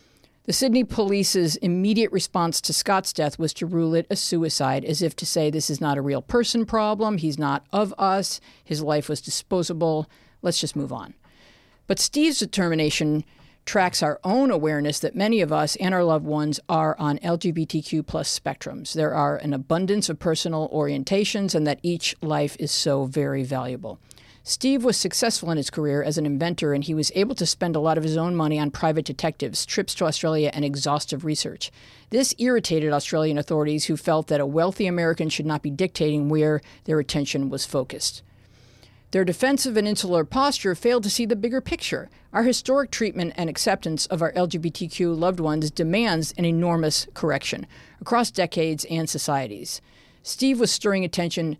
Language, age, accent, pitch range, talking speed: English, 50-69, American, 150-180 Hz, 180 wpm